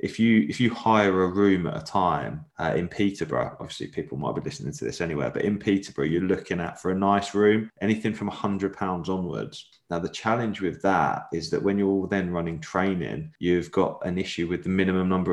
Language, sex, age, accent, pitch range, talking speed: English, male, 20-39, British, 90-100 Hz, 225 wpm